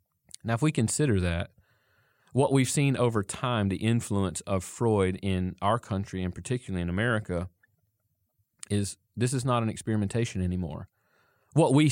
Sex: male